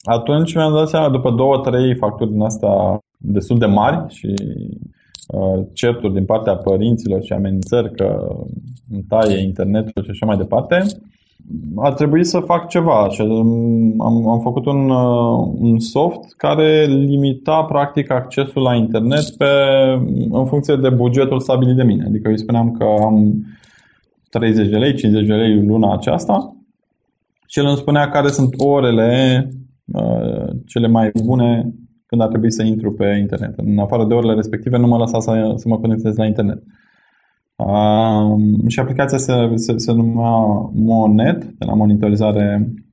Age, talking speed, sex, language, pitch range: 20-39, 155 wpm, male, Romanian, 105-130 Hz